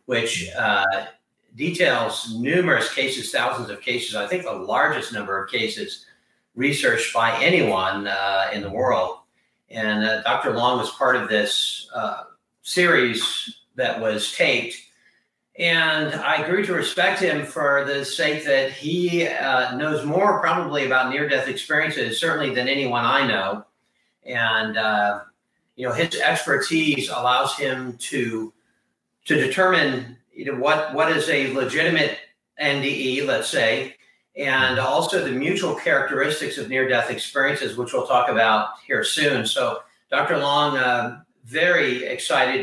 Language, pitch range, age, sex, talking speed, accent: English, 120-155 Hz, 50-69, male, 135 wpm, American